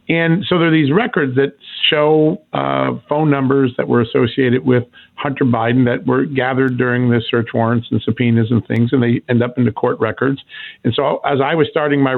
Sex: male